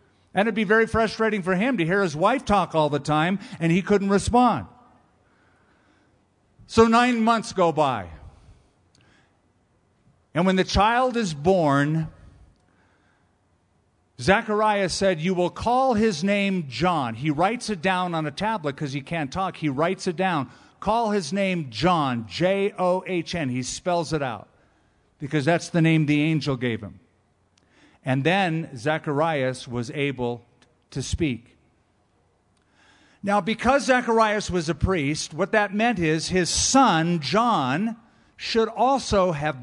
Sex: male